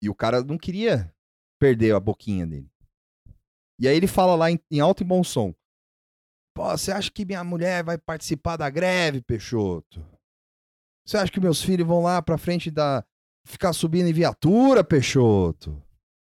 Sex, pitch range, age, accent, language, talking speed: male, 90-130 Hz, 30-49, Brazilian, Portuguese, 165 wpm